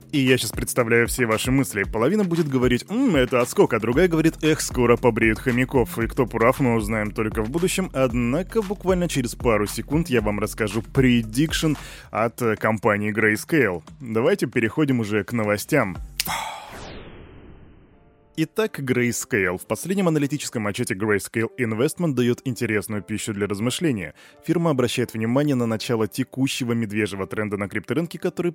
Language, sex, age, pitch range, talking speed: Russian, male, 20-39, 110-140 Hz, 145 wpm